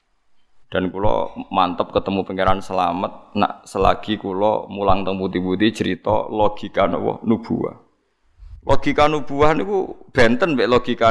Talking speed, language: 110 wpm, Indonesian